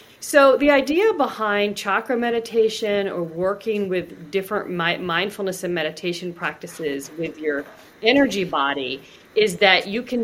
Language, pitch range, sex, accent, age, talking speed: English, 170-200 Hz, female, American, 40-59, 130 wpm